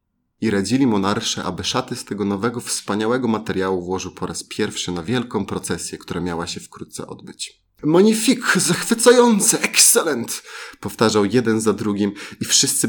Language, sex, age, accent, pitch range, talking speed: Polish, male, 30-49, native, 95-115 Hz, 155 wpm